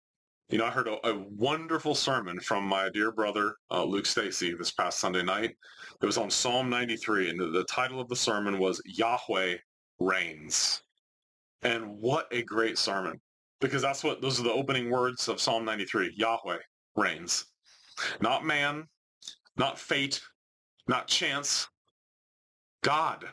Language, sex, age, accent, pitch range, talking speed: English, male, 30-49, American, 110-150 Hz, 145 wpm